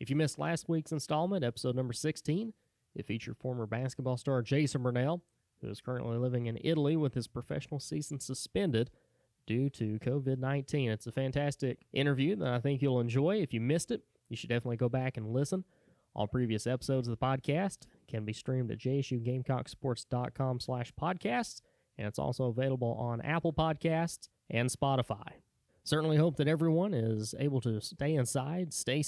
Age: 20-39